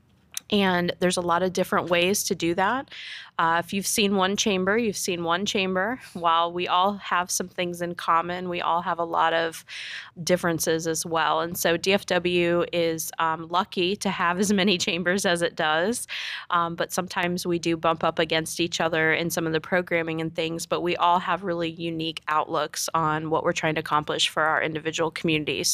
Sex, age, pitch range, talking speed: female, 20-39, 170-195 Hz, 200 wpm